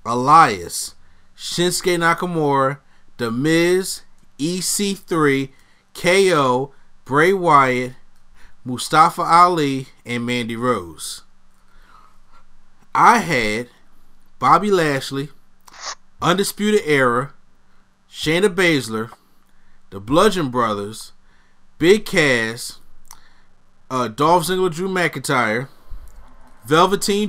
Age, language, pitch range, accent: 30-49, English, 115-175 Hz, American